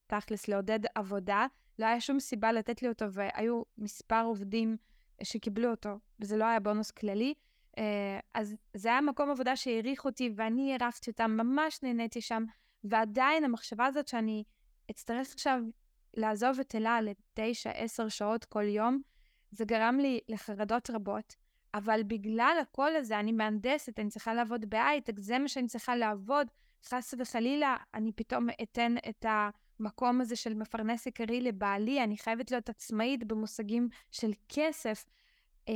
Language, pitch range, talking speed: Hebrew, 220-255 Hz, 145 wpm